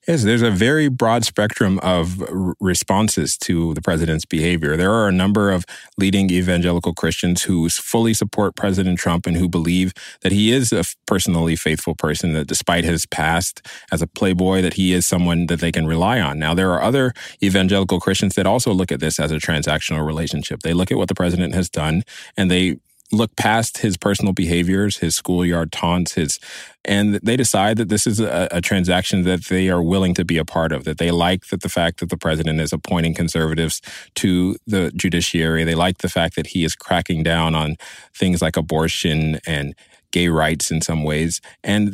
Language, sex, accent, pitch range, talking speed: English, male, American, 80-100 Hz, 195 wpm